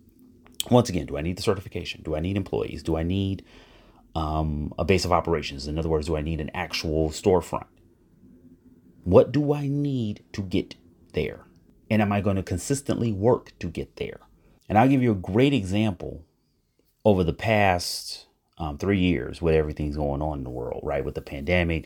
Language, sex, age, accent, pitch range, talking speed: English, male, 30-49, American, 85-125 Hz, 190 wpm